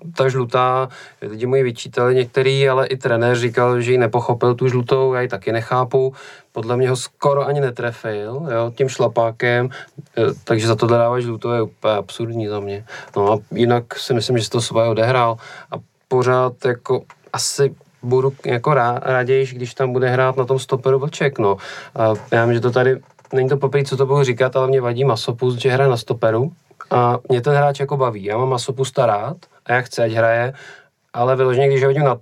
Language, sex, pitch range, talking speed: Czech, male, 120-135 Hz, 195 wpm